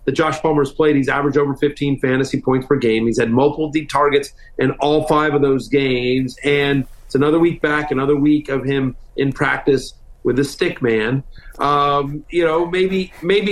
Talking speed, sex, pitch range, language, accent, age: 185 wpm, male, 140-160 Hz, English, American, 40-59